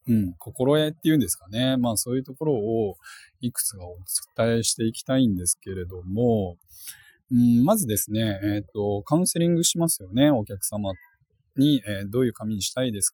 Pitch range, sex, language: 100-135 Hz, male, Japanese